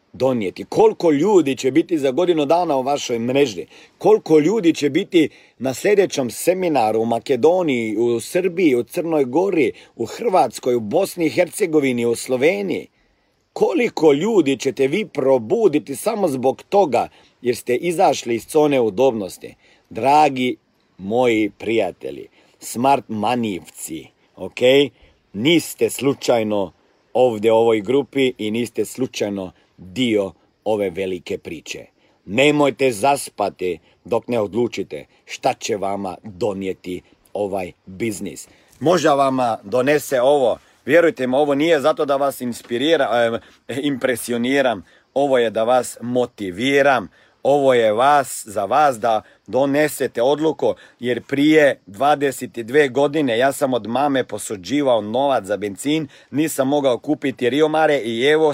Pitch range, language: 120-155 Hz, Croatian